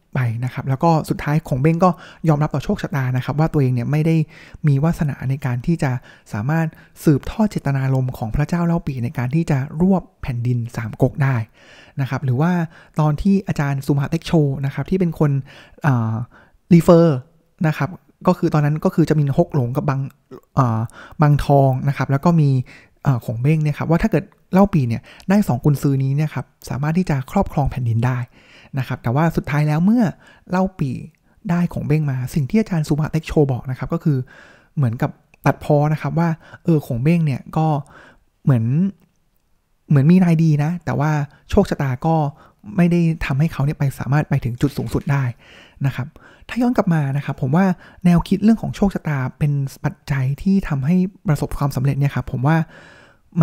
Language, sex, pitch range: Thai, male, 135-165 Hz